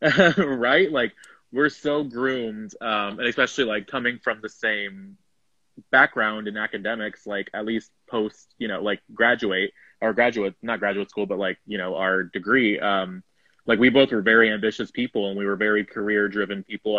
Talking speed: 175 wpm